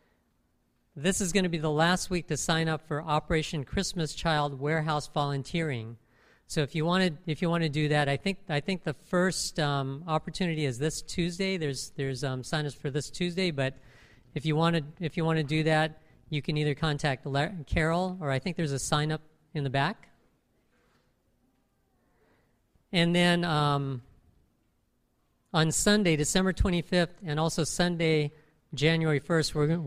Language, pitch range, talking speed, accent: English, 140-170 Hz, 170 wpm, American